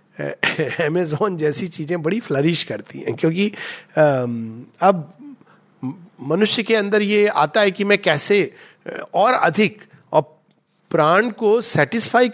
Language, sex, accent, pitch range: Hindi, male, native, 160-220 Hz